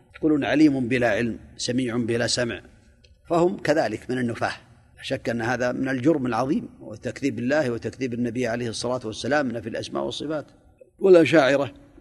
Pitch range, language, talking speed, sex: 120-165 Hz, Arabic, 150 wpm, male